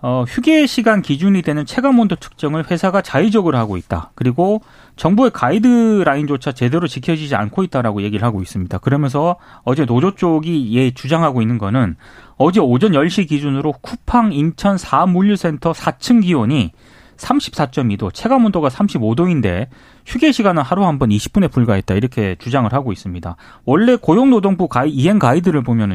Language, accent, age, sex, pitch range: Korean, native, 30-49, male, 130-220 Hz